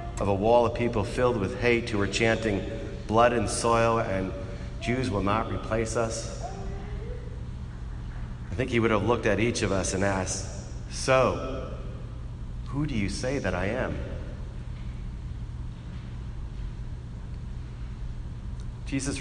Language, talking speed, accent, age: English, 130 wpm, American, 40-59